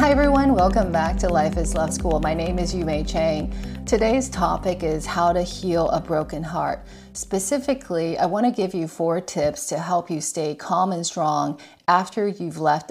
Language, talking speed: English, 185 wpm